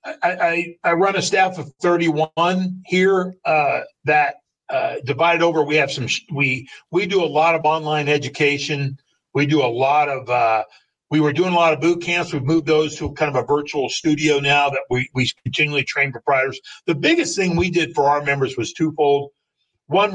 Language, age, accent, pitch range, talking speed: English, 50-69, American, 145-180 Hz, 205 wpm